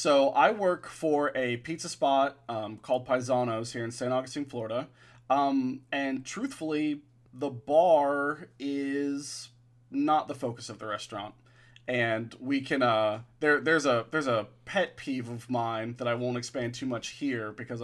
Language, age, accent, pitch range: English, 30-49, American, 115-135 Hz